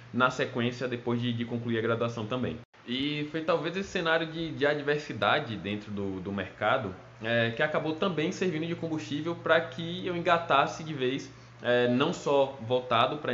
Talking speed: 175 wpm